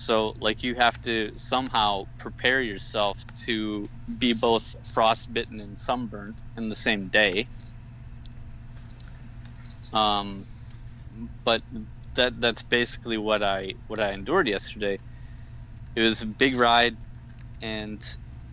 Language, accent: English, American